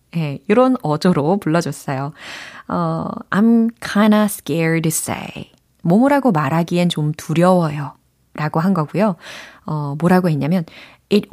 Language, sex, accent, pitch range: Korean, female, native, 155-220 Hz